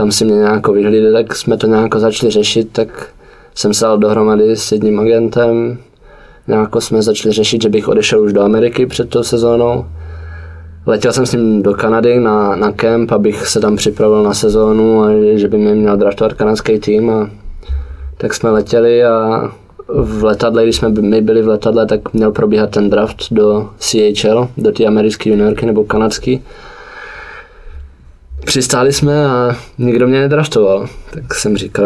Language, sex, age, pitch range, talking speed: Czech, male, 20-39, 105-115 Hz, 170 wpm